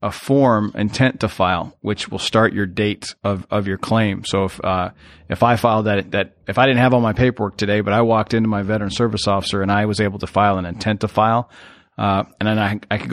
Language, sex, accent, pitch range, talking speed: English, male, American, 100-120 Hz, 245 wpm